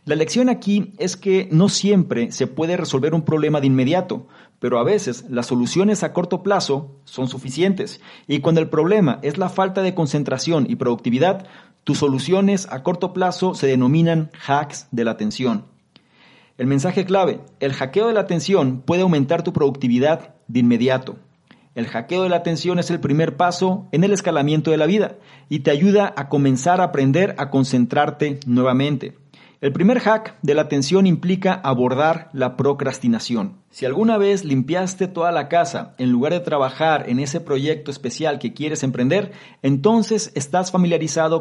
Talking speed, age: 170 wpm, 40-59